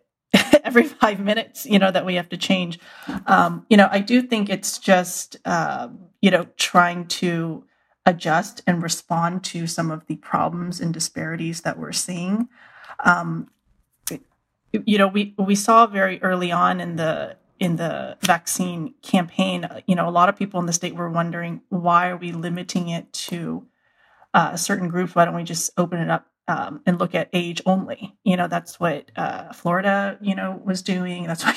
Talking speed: 185 wpm